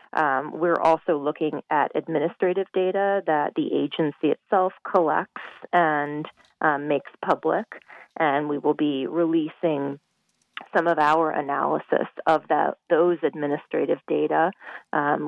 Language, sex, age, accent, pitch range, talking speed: English, female, 30-49, American, 150-180 Hz, 120 wpm